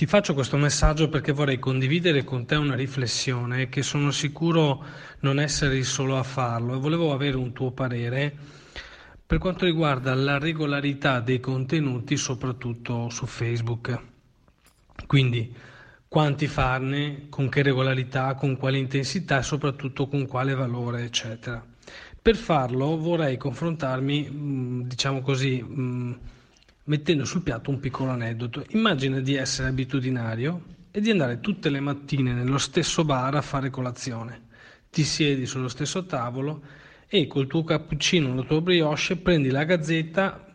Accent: native